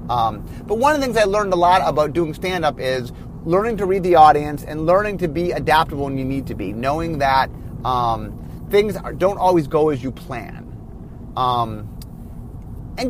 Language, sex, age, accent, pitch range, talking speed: English, male, 30-49, American, 130-185 Hz, 190 wpm